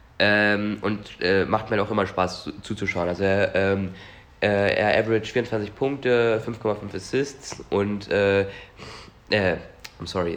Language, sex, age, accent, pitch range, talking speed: German, male, 20-39, German, 100-115 Hz, 140 wpm